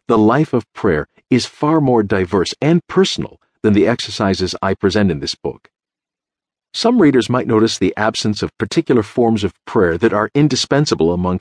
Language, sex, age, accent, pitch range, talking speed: English, male, 50-69, American, 100-125 Hz, 175 wpm